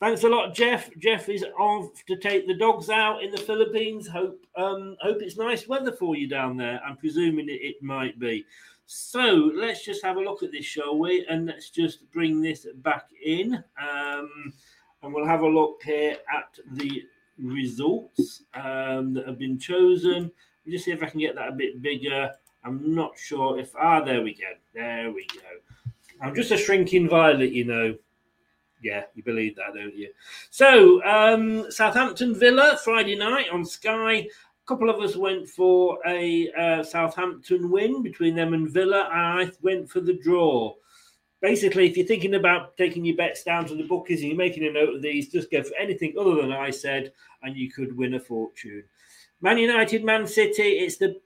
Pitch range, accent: 145-225 Hz, British